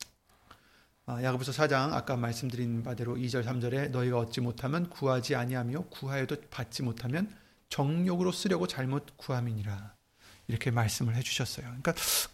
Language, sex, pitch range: Korean, male, 120-170 Hz